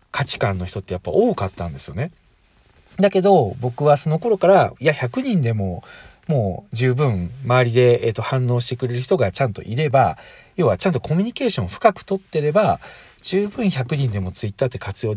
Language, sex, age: Japanese, male, 40-59